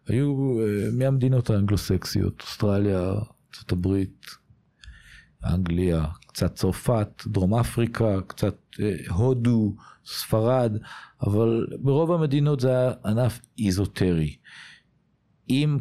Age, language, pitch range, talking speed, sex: 50-69, Hebrew, 90-115 Hz, 90 wpm, male